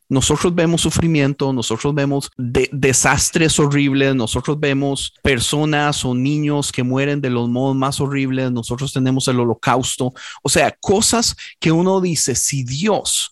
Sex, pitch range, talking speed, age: male, 130-160 Hz, 145 wpm, 40-59